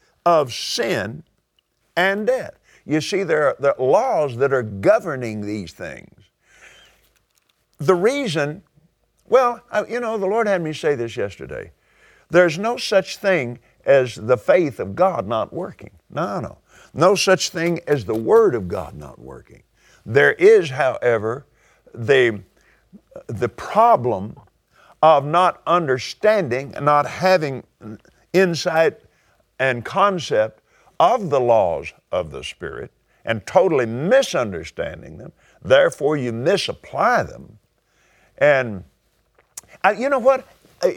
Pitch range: 130-200 Hz